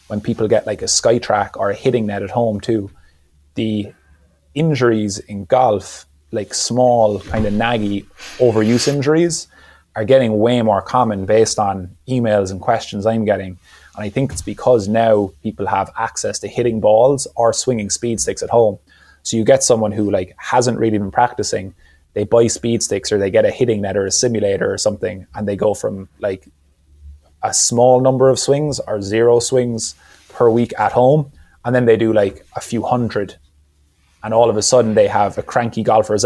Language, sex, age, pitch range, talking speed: English, male, 20-39, 100-120 Hz, 190 wpm